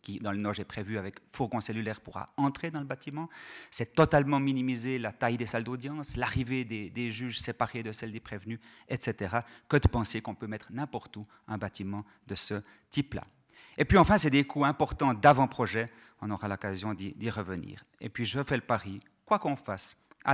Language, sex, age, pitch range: French, male, 40-59, 105-135 Hz